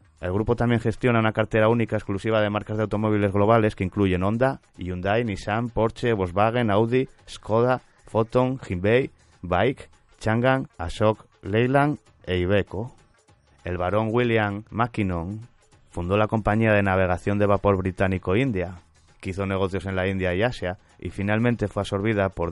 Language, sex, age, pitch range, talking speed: Spanish, male, 30-49, 90-110 Hz, 150 wpm